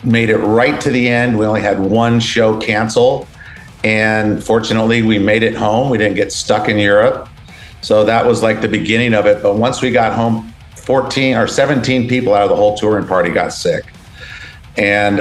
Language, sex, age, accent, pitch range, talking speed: English, male, 50-69, American, 105-125 Hz, 195 wpm